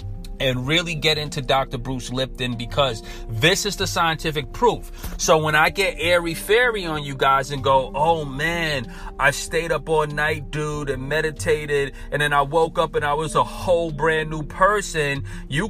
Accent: American